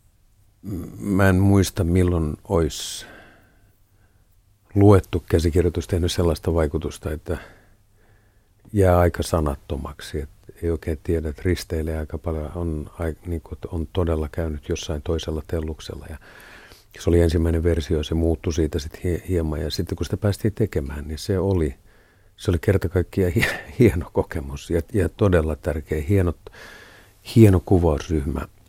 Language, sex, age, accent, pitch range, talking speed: Finnish, male, 50-69, native, 80-95 Hz, 125 wpm